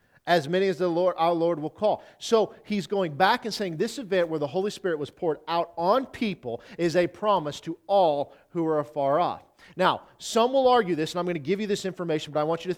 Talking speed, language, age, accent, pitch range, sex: 250 wpm, English, 40-59, American, 170-225 Hz, male